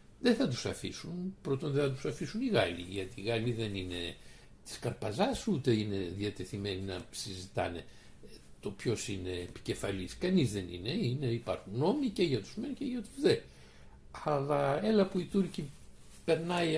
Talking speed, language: 170 wpm, Greek